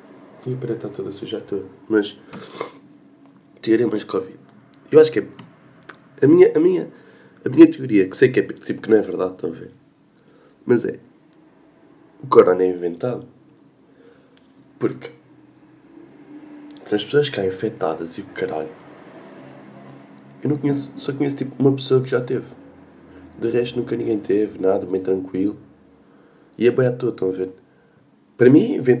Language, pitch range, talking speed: Portuguese, 95-140 Hz, 155 wpm